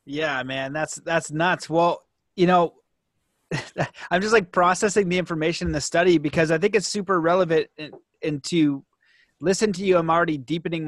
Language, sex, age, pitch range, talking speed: English, male, 30-49, 135-165 Hz, 170 wpm